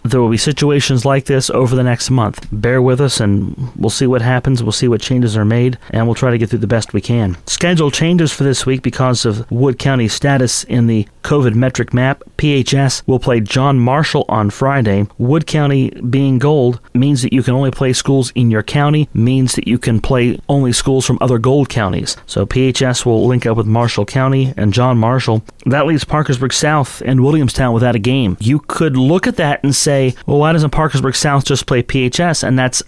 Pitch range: 115-135 Hz